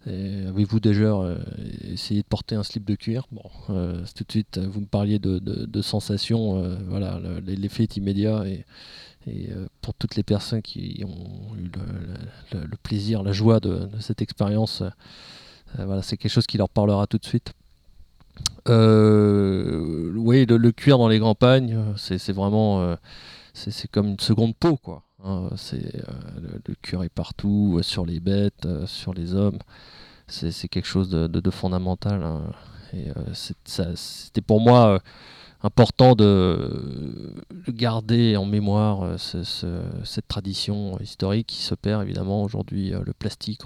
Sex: male